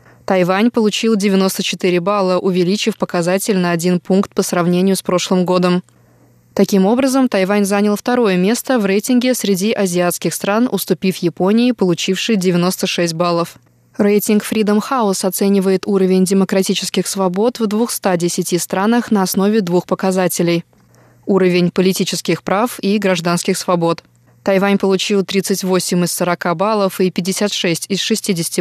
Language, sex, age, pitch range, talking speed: Russian, female, 20-39, 180-210 Hz, 125 wpm